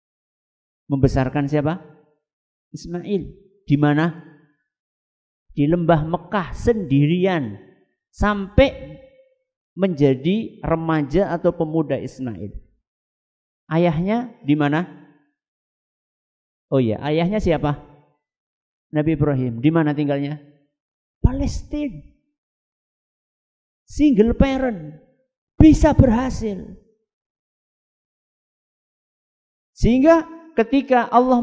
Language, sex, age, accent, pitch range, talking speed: Indonesian, male, 50-69, native, 155-255 Hz, 65 wpm